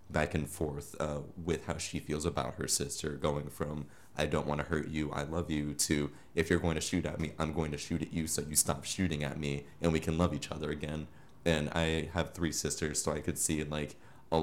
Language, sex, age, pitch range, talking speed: English, male, 30-49, 75-85 Hz, 250 wpm